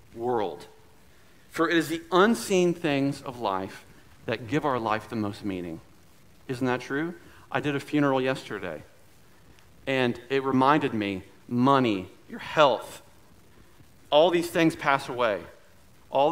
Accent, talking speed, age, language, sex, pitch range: American, 135 wpm, 40-59, English, male, 115-175 Hz